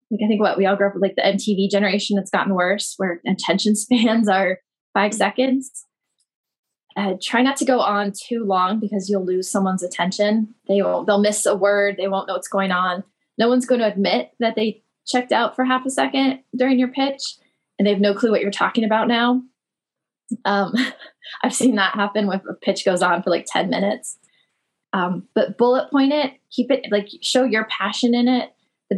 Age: 20-39